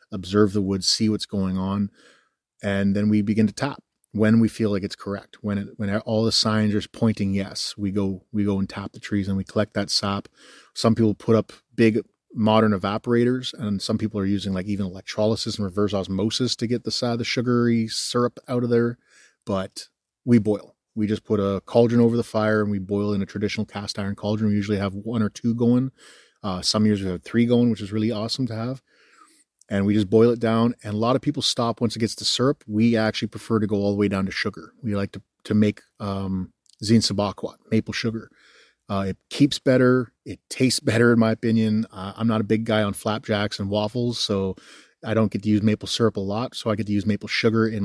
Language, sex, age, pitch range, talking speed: English, male, 30-49, 100-115 Hz, 230 wpm